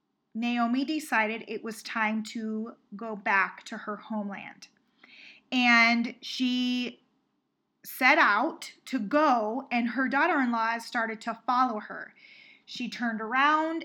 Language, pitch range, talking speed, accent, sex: English, 230-265 Hz, 115 wpm, American, female